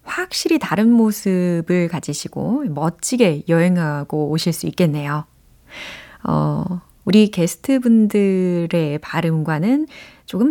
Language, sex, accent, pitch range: Korean, female, native, 160-225 Hz